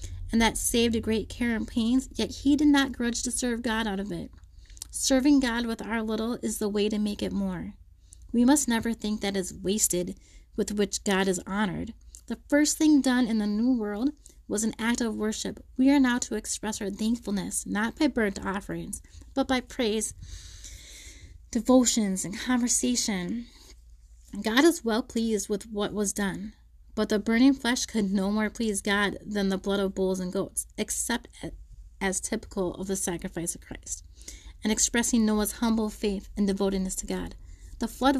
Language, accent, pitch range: English, American, 190-235 Hz